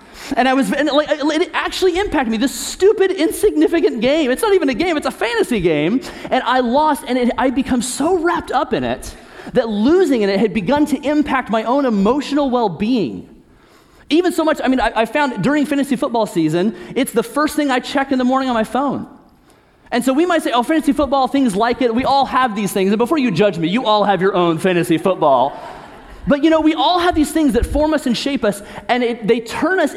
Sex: male